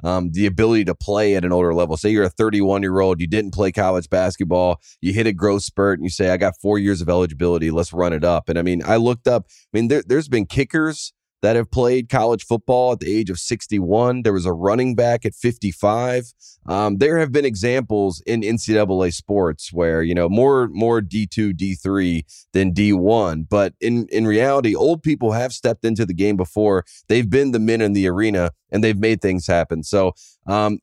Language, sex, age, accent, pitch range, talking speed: English, male, 30-49, American, 95-115 Hz, 215 wpm